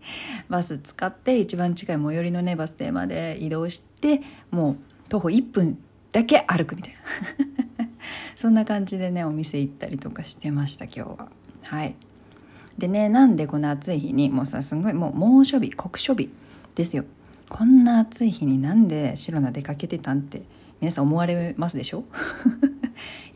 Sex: female